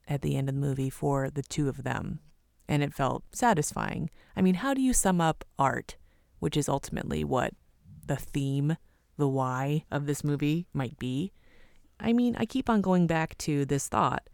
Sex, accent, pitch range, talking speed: female, American, 135-165 Hz, 195 wpm